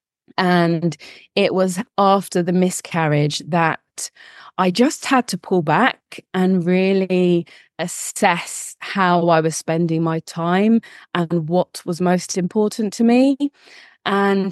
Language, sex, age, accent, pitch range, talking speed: English, female, 20-39, British, 175-205 Hz, 125 wpm